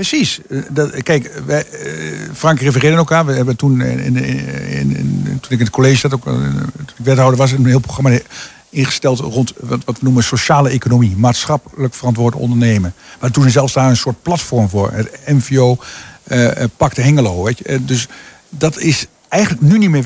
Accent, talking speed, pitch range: Dutch, 195 wpm, 125-160 Hz